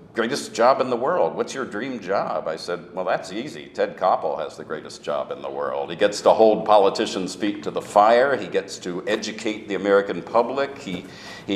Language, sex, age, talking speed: English, male, 50-69, 215 wpm